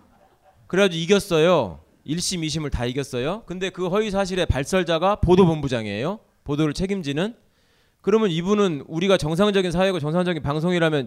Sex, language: male, Korean